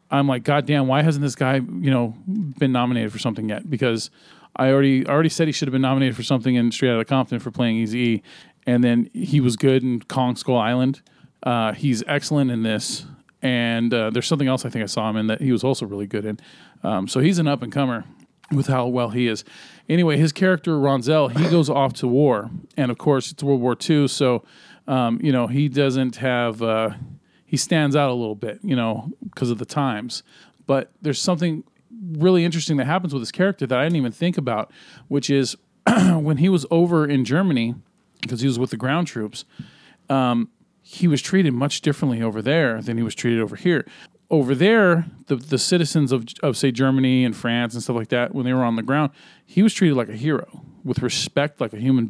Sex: male